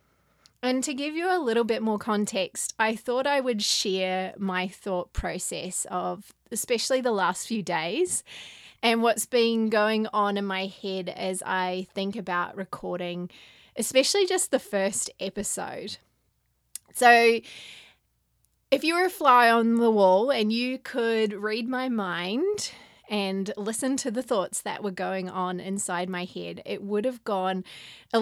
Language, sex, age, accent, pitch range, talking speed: English, female, 20-39, Australian, 190-255 Hz, 155 wpm